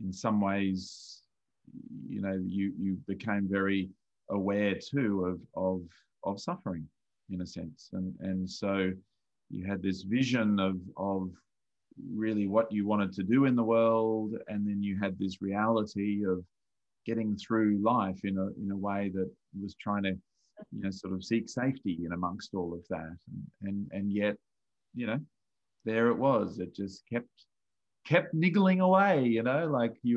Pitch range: 95-120 Hz